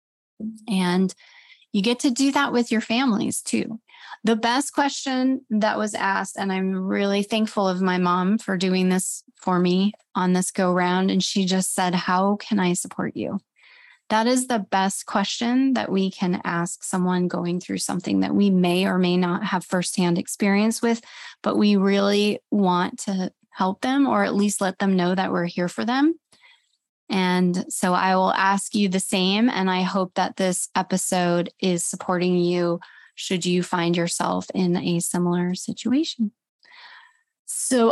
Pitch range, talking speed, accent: 185-235 Hz, 170 wpm, American